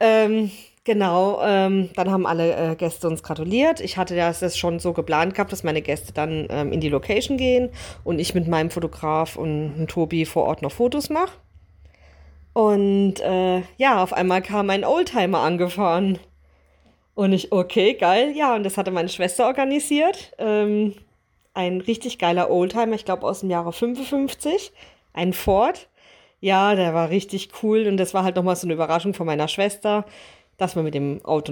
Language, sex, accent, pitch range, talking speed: German, female, German, 170-225 Hz, 175 wpm